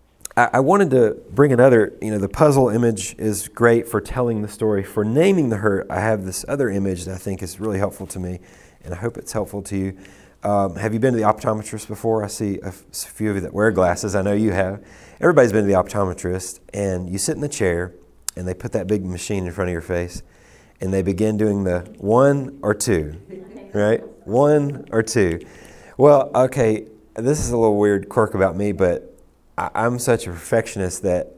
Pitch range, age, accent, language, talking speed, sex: 95-120 Hz, 30-49, American, English, 210 wpm, male